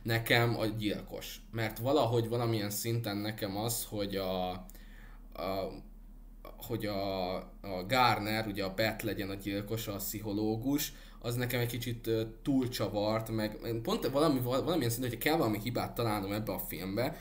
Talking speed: 145 wpm